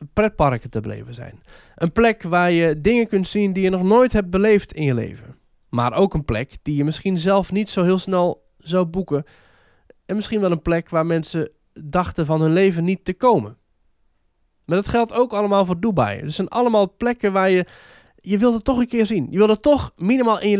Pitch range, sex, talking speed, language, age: 145-215 Hz, male, 220 wpm, Dutch, 20-39